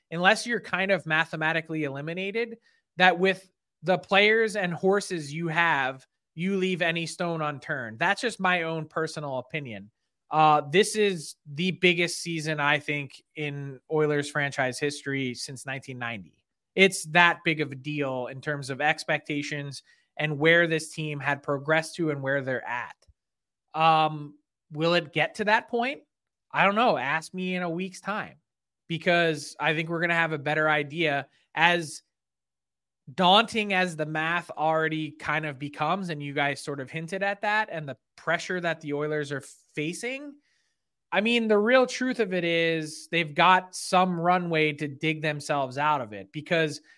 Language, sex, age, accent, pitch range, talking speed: English, male, 20-39, American, 145-175 Hz, 165 wpm